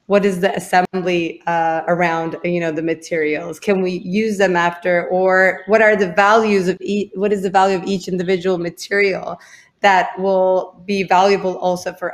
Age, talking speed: 30-49, 180 wpm